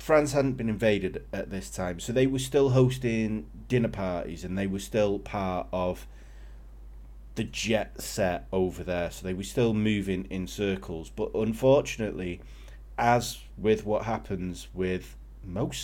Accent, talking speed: British, 150 wpm